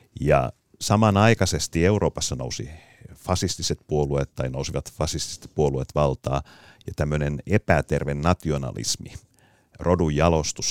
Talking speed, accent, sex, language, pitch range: 85 wpm, native, male, Finnish, 75-100 Hz